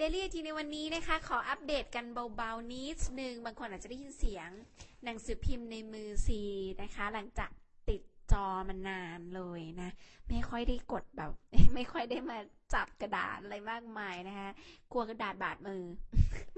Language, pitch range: Thai, 195-255 Hz